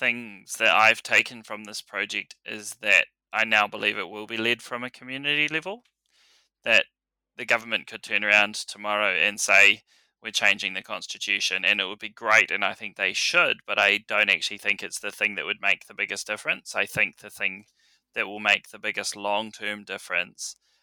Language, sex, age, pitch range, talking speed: English, male, 20-39, 105-120 Hz, 195 wpm